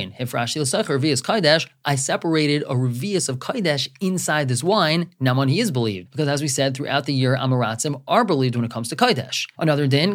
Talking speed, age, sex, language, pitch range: 195 wpm, 20-39, male, English, 130-170 Hz